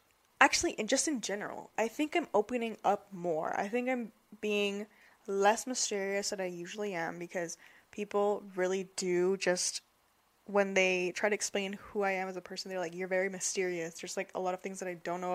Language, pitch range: English, 185-225 Hz